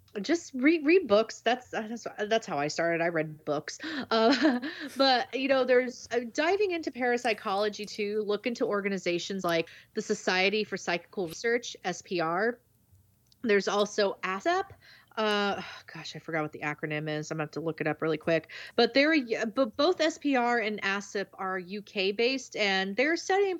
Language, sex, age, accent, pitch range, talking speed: English, female, 30-49, American, 185-265 Hz, 170 wpm